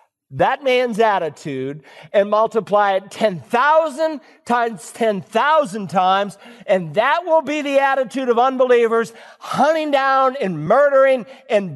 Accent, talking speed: American, 115 wpm